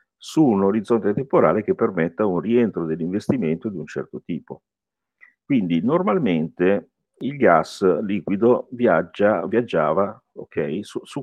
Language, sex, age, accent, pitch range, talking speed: Italian, male, 50-69, native, 90-125 Hz, 110 wpm